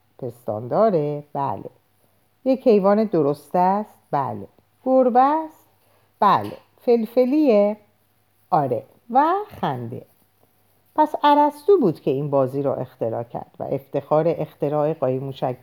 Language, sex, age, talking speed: Persian, female, 50-69, 110 wpm